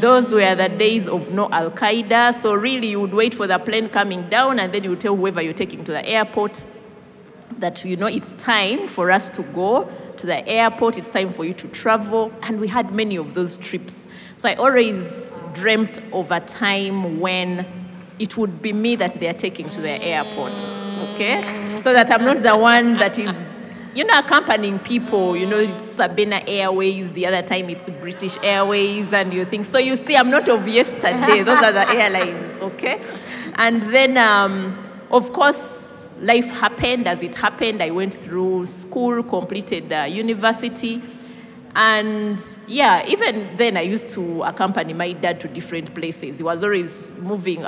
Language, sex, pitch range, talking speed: English, female, 185-230 Hz, 180 wpm